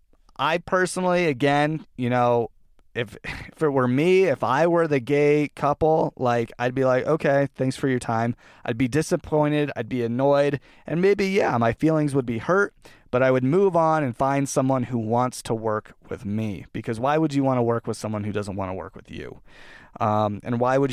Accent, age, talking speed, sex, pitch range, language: American, 30-49, 210 wpm, male, 115-150 Hz, English